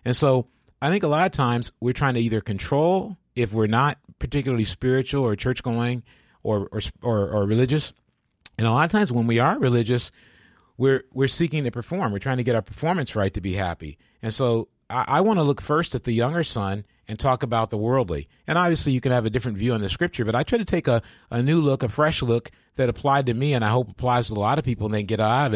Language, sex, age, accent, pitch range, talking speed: English, male, 40-59, American, 110-140 Hz, 250 wpm